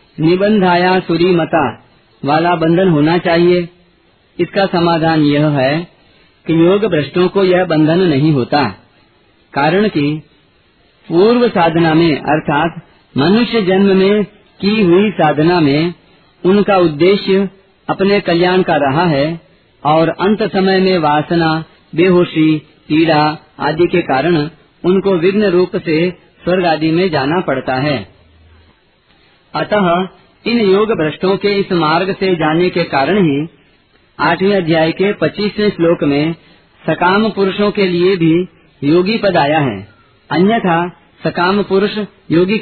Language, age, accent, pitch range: Hindi, 40-59, native, 155-195 Hz